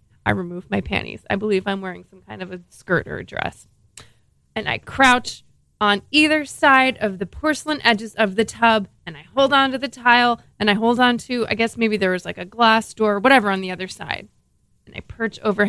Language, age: English, 20-39